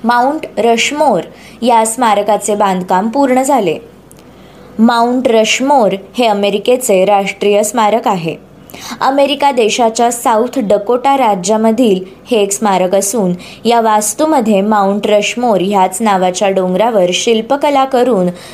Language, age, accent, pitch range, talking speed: Marathi, 20-39, native, 200-255 Hz, 105 wpm